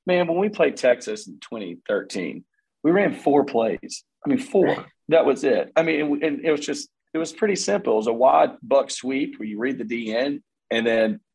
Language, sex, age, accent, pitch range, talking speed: English, male, 40-59, American, 105-165 Hz, 210 wpm